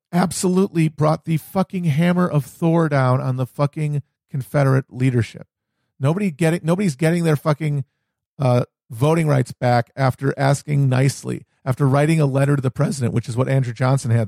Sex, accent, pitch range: male, American, 125-155 Hz